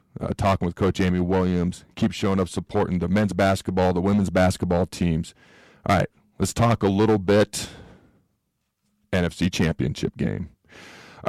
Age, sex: 40-59, male